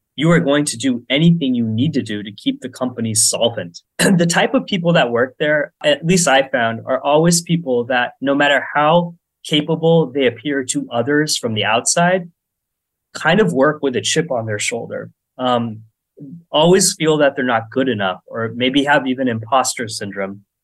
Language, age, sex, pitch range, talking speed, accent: English, 20-39, male, 115-155 Hz, 185 wpm, American